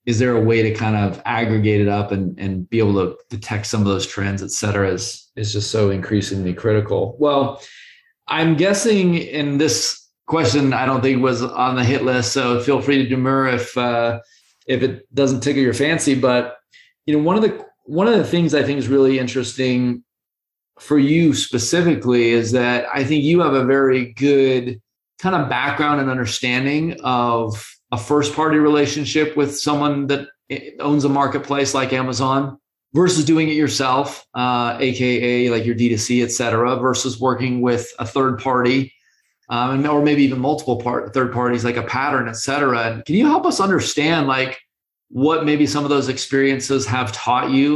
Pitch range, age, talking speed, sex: 120-145 Hz, 20-39, 185 wpm, male